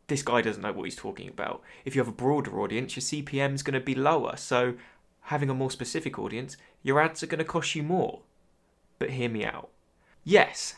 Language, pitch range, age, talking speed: English, 125-165 Hz, 20-39, 225 wpm